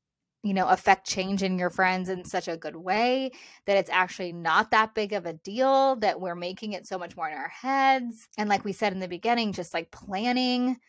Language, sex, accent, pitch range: English, female, American, 185-220 Hz